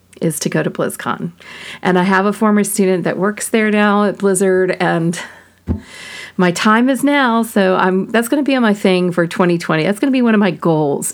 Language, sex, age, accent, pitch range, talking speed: English, female, 40-59, American, 175-225 Hz, 220 wpm